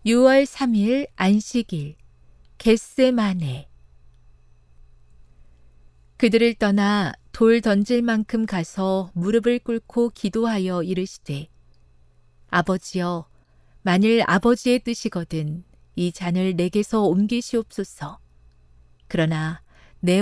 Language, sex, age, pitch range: Korean, female, 40-59, 140-225 Hz